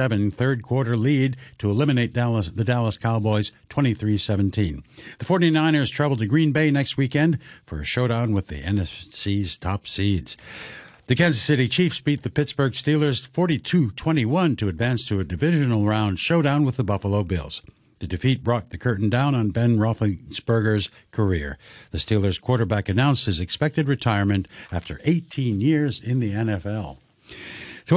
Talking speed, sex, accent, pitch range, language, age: 150 wpm, male, American, 105-145 Hz, English, 60-79